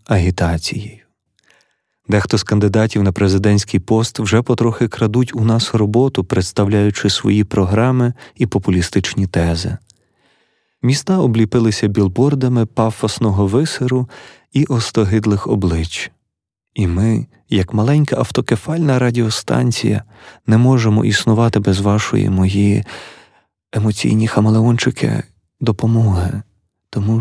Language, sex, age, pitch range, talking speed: Ukrainian, male, 30-49, 100-120 Hz, 95 wpm